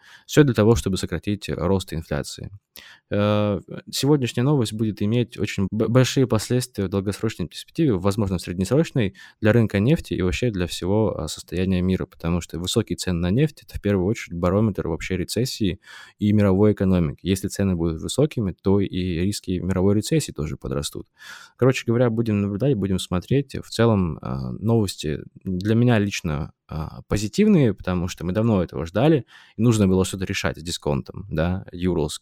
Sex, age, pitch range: male, 20-39, 90-115 Hz